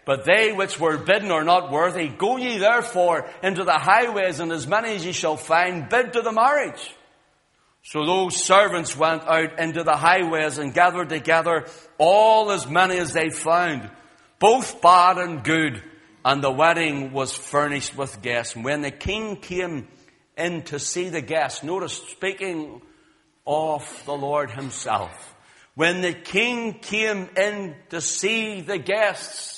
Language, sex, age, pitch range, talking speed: English, male, 60-79, 155-205 Hz, 160 wpm